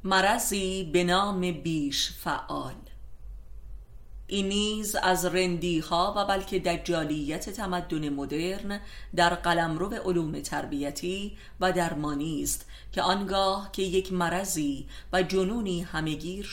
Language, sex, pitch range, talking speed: Persian, female, 150-190 Hz, 105 wpm